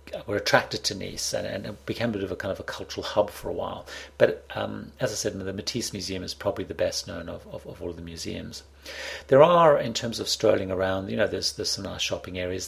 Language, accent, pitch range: English, British, 85-100 Hz